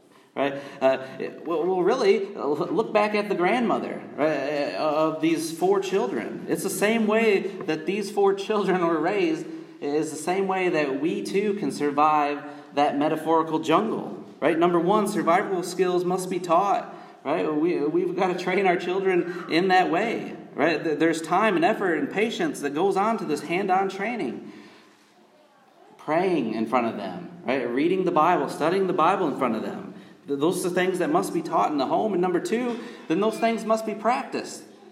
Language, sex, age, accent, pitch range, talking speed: English, male, 30-49, American, 155-205 Hz, 180 wpm